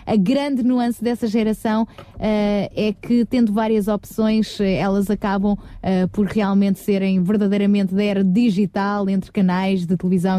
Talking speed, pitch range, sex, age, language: 150 wpm, 195-255 Hz, female, 20-39, Portuguese